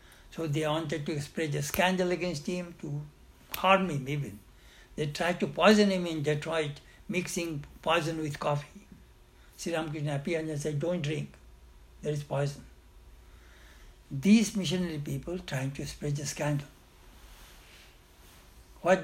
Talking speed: 135 wpm